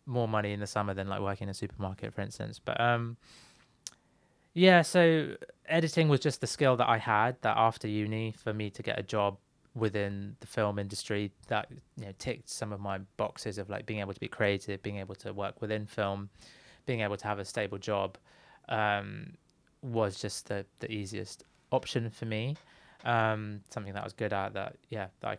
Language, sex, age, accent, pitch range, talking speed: English, male, 20-39, British, 105-120 Hz, 205 wpm